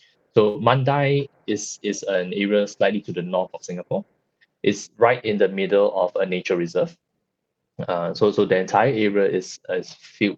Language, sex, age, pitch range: Thai, male, 20-39, 95-125 Hz